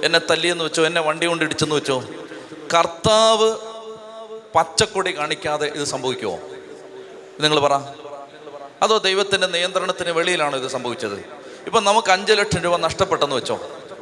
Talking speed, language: 115 wpm, Malayalam